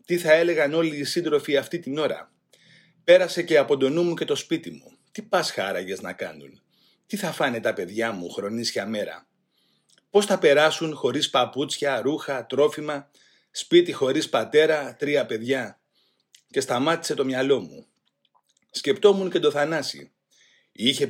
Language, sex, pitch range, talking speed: Greek, male, 145-220 Hz, 155 wpm